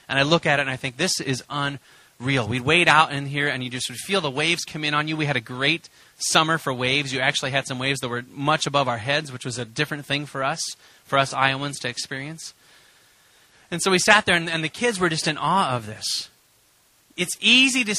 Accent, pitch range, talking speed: American, 130-160 Hz, 250 wpm